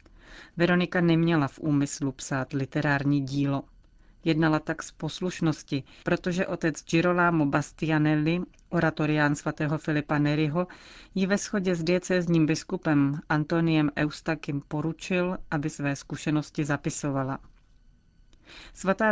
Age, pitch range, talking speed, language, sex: 30-49, 150-170 Hz, 105 wpm, Czech, female